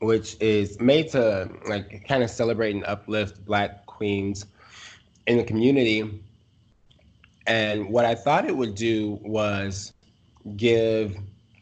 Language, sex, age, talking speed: English, male, 20-39, 125 wpm